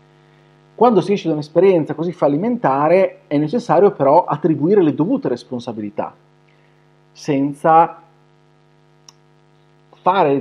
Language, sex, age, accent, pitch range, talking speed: Italian, male, 40-59, native, 150-160 Hz, 90 wpm